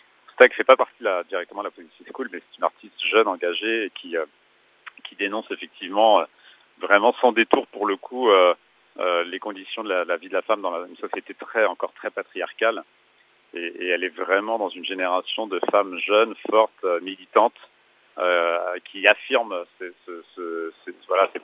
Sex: male